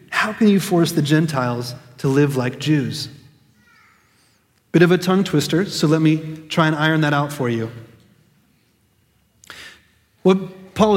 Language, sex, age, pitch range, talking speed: English, male, 30-49, 125-190 Hz, 150 wpm